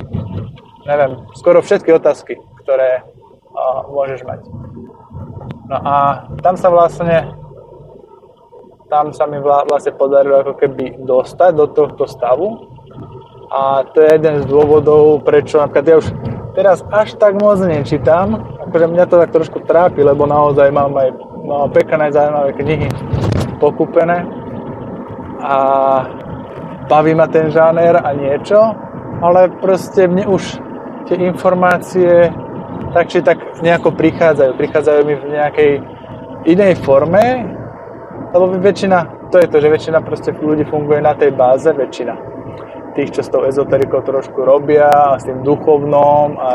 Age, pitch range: 20-39, 135-170 Hz